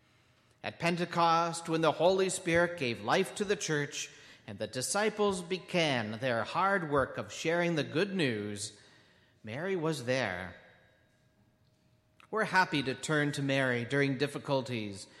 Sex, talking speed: male, 135 wpm